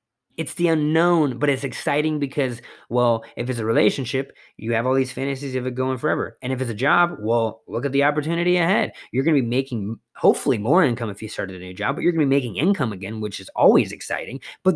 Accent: American